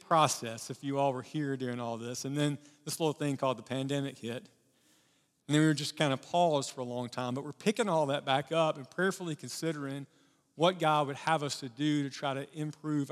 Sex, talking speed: male, 235 wpm